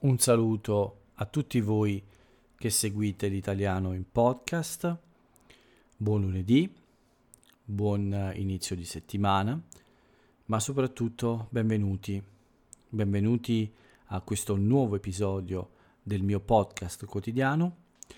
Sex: male